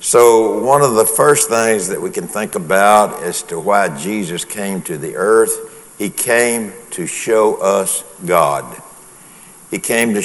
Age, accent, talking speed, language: 60-79, American, 165 wpm, English